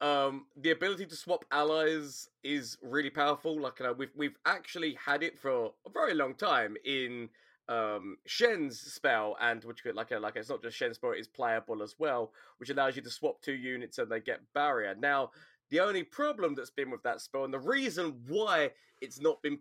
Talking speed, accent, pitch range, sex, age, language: 210 wpm, British, 145-200 Hz, male, 20-39, English